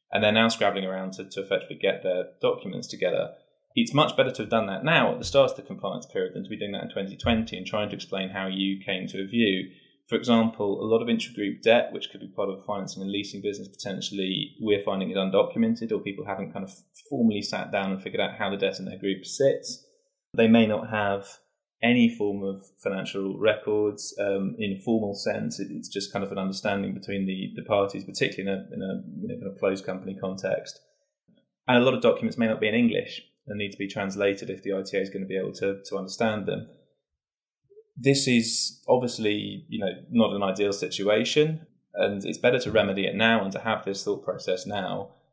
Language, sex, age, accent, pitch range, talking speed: English, male, 20-39, British, 95-115 Hz, 225 wpm